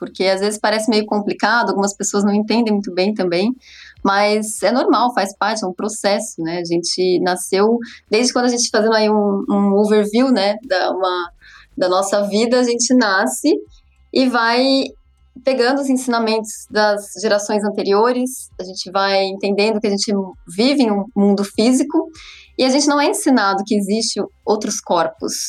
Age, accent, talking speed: 20-39, Brazilian, 170 wpm